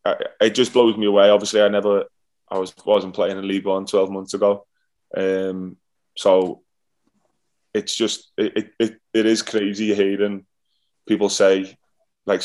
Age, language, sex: 20-39, English, male